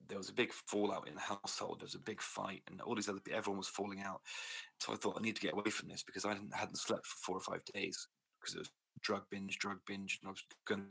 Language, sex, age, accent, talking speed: English, male, 30-49, British, 290 wpm